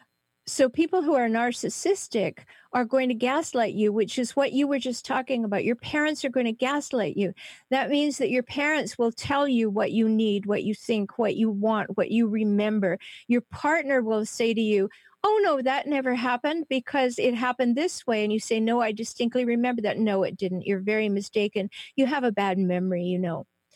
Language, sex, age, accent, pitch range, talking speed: English, female, 50-69, American, 215-270 Hz, 205 wpm